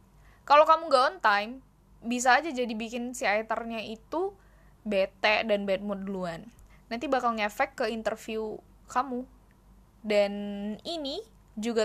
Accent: native